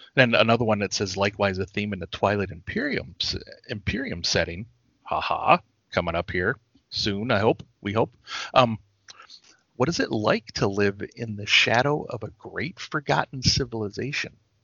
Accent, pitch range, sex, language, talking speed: American, 95-115 Hz, male, English, 165 wpm